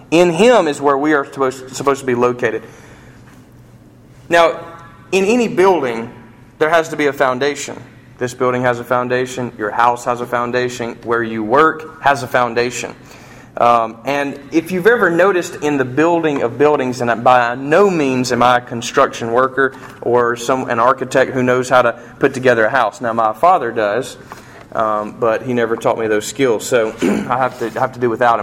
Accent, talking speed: American, 190 wpm